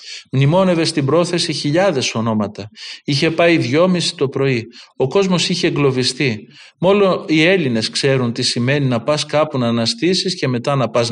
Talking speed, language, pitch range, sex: 155 wpm, Greek, 125-170 Hz, male